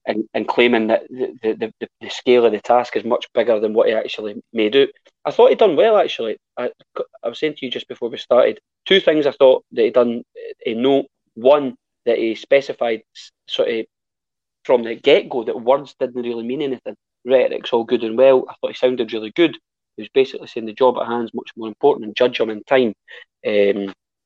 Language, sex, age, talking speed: English, male, 20-39, 225 wpm